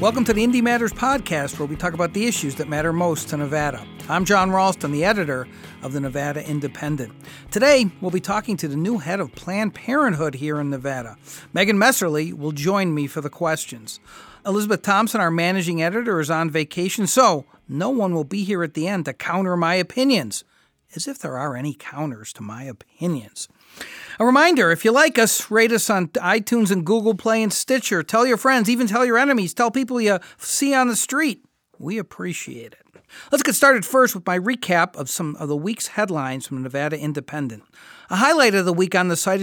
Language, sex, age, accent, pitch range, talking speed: English, male, 50-69, American, 155-215 Hz, 205 wpm